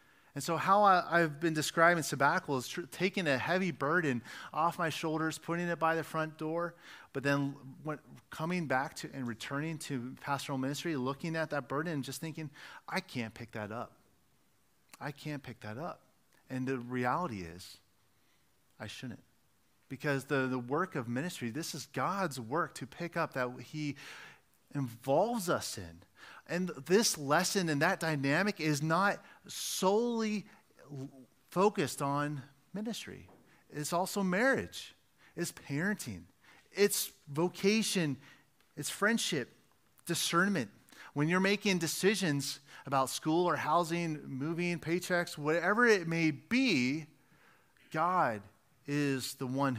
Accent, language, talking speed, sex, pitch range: American, English, 135 wpm, male, 135-175 Hz